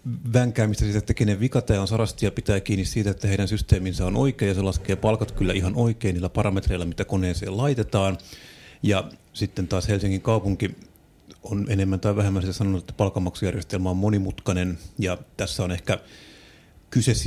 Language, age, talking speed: Finnish, 30-49, 165 wpm